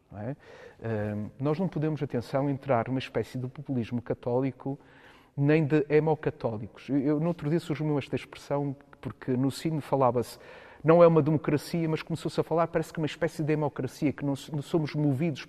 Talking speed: 180 wpm